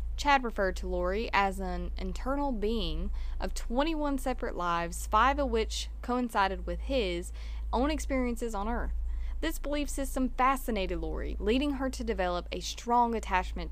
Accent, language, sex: American, English, female